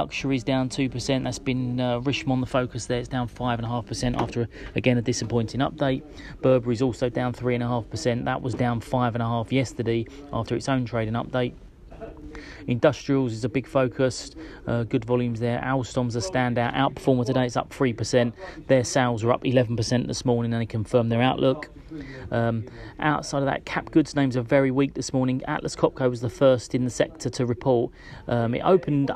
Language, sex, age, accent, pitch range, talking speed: English, male, 30-49, British, 115-130 Hz, 180 wpm